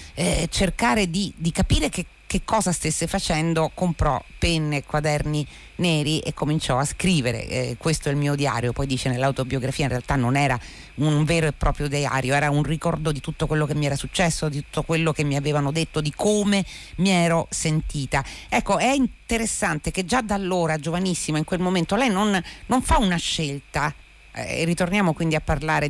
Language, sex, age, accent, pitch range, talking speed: Italian, female, 40-59, native, 145-190 Hz, 190 wpm